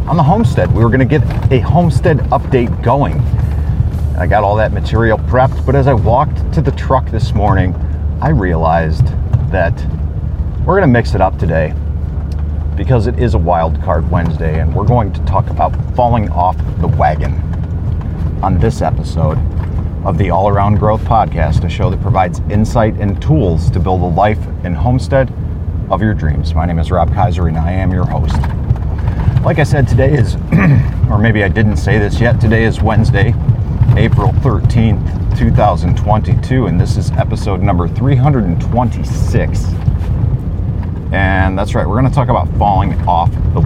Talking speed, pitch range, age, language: 170 wpm, 85-115 Hz, 40-59, English